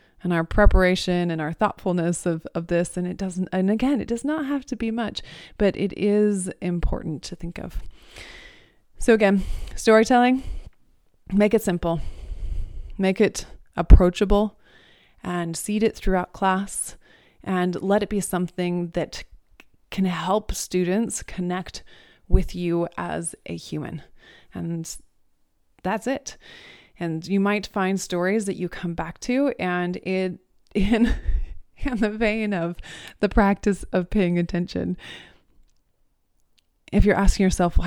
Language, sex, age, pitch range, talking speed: English, female, 20-39, 175-210 Hz, 140 wpm